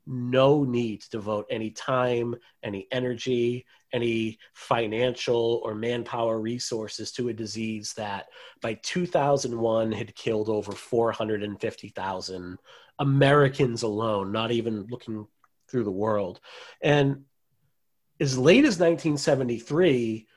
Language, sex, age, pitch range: English, male, 30-49, 110-140 Hz